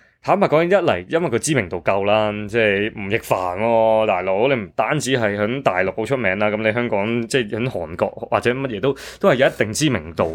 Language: Chinese